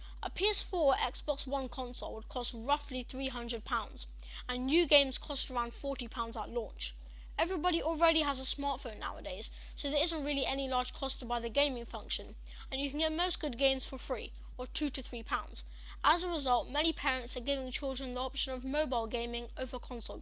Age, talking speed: 10-29, 195 wpm